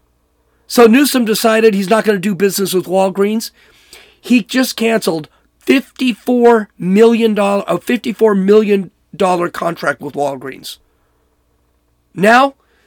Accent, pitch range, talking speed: American, 145-205 Hz, 105 wpm